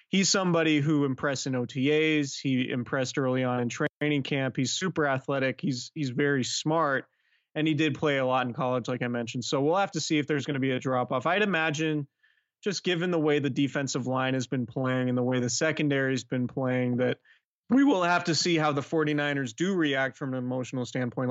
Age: 30-49